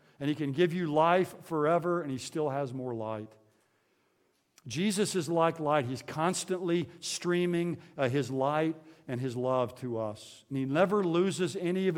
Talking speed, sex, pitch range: 170 wpm, male, 130-170 Hz